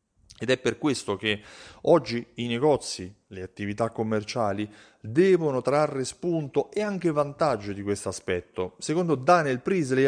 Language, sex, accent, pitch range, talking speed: Italian, male, native, 110-165 Hz, 135 wpm